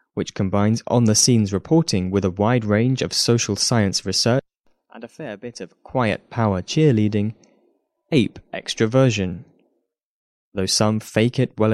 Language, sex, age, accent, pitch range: Chinese, male, 20-39, British, 100-130 Hz